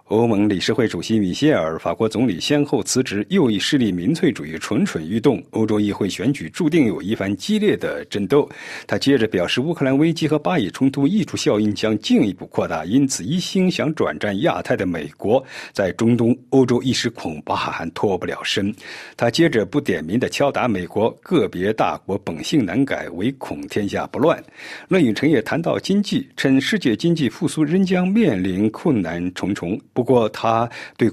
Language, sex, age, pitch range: Chinese, male, 50-69, 110-175 Hz